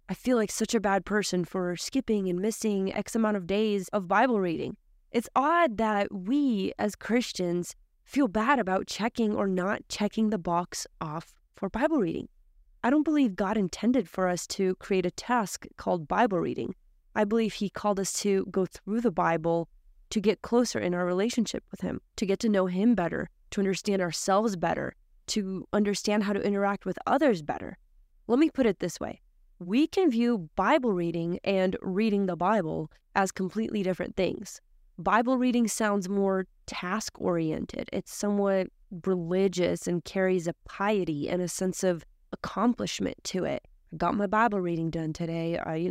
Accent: American